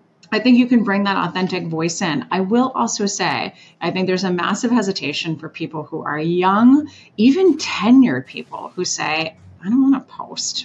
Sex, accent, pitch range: female, American, 165-210 Hz